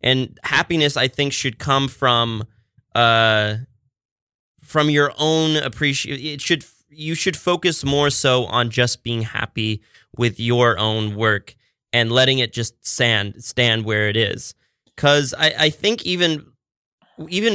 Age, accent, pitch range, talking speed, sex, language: 20-39, American, 115-150 Hz, 145 wpm, male, English